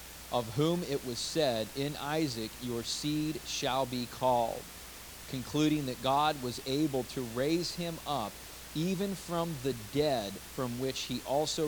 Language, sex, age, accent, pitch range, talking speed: English, male, 40-59, American, 95-130 Hz, 150 wpm